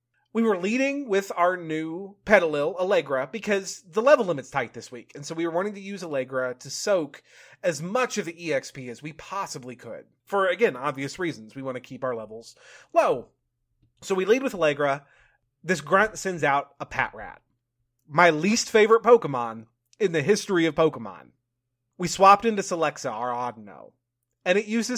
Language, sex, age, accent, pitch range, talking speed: English, male, 30-49, American, 125-210 Hz, 180 wpm